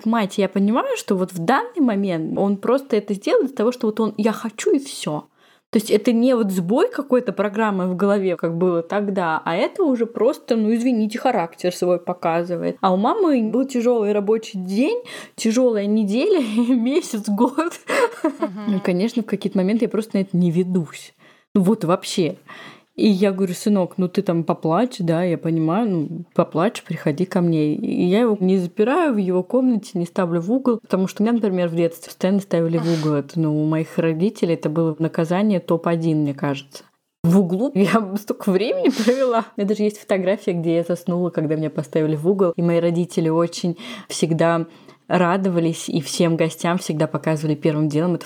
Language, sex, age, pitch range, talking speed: Russian, female, 20-39, 170-225 Hz, 185 wpm